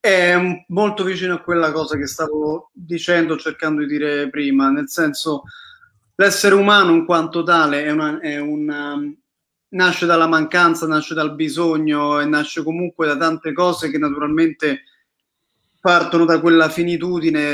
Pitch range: 150-185 Hz